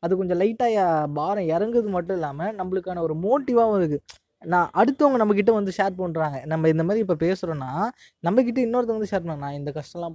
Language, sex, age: Tamil, female, 20-39